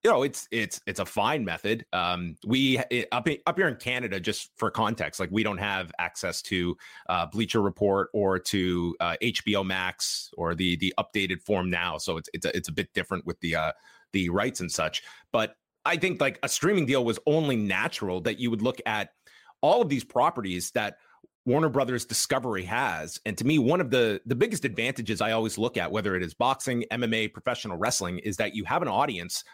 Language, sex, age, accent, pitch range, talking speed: English, male, 30-49, American, 100-130 Hz, 210 wpm